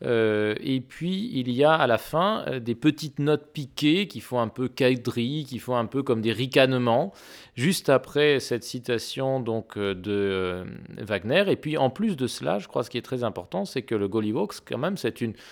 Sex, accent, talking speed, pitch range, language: male, French, 220 wpm, 115-140 Hz, French